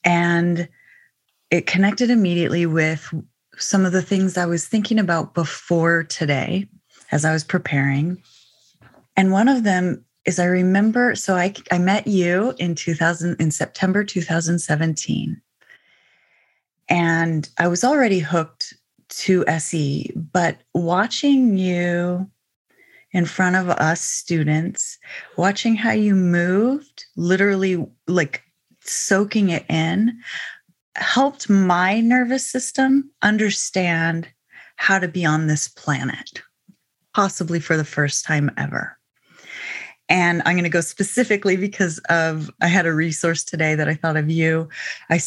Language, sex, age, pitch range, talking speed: English, female, 30-49, 165-200 Hz, 125 wpm